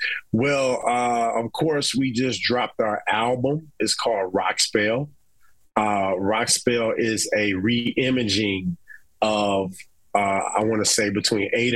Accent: American